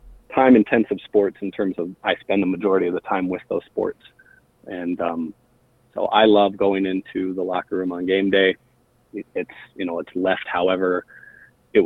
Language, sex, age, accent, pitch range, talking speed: English, male, 30-49, American, 95-105 Hz, 180 wpm